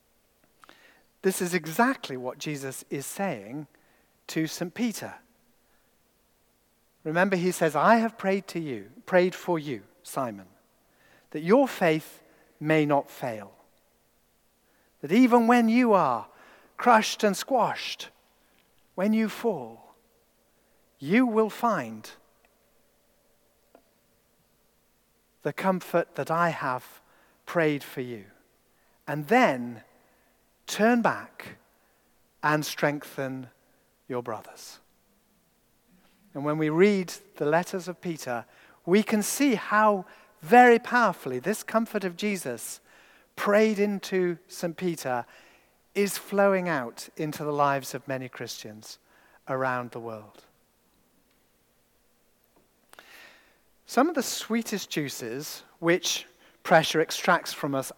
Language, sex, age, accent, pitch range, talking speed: English, male, 50-69, British, 140-205 Hz, 105 wpm